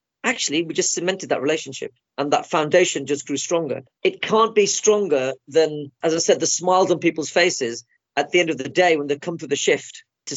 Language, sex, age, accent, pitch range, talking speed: English, female, 40-59, British, 150-190 Hz, 220 wpm